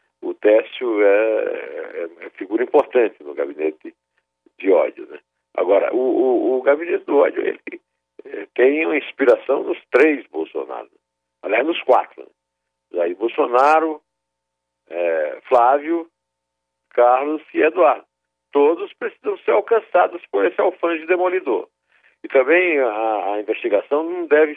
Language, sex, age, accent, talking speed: Portuguese, male, 60-79, Brazilian, 135 wpm